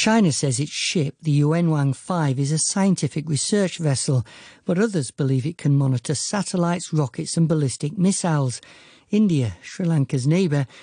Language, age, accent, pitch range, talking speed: English, 60-79, British, 120-165 Hz, 145 wpm